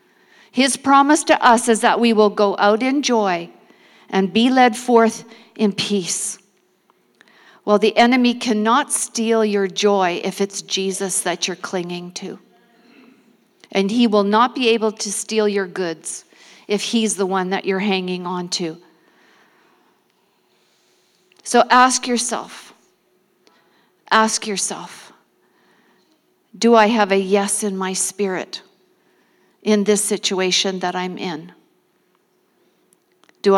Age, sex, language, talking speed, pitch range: 50-69, female, English, 125 wpm, 195-230 Hz